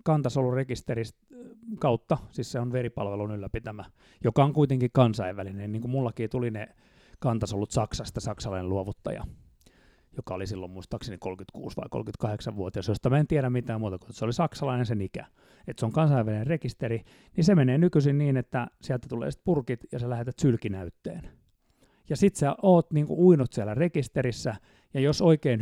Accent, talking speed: native, 155 wpm